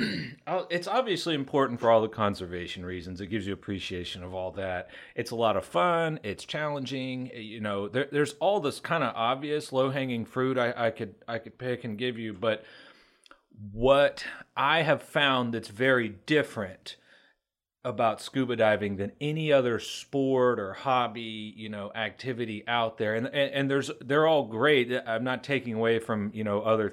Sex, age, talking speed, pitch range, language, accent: male, 30-49, 175 wpm, 105-135 Hz, English, American